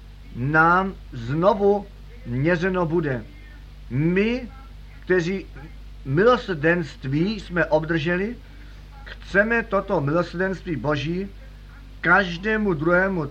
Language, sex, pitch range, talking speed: Czech, male, 145-190 Hz, 70 wpm